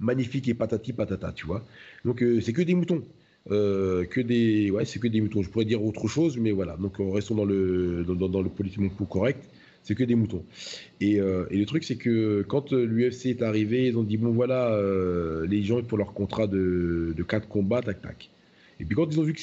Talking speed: 230 wpm